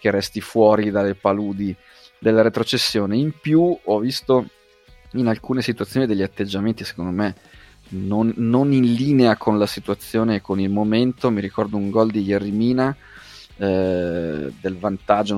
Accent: native